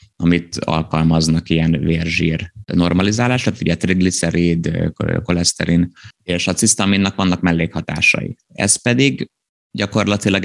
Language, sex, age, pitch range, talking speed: Hungarian, male, 30-49, 85-95 Hz, 90 wpm